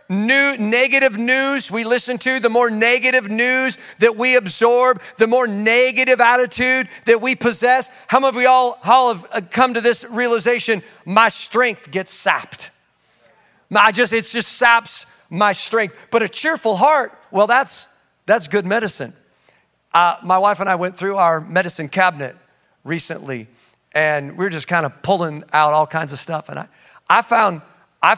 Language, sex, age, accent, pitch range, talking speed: English, male, 40-59, American, 190-245 Hz, 160 wpm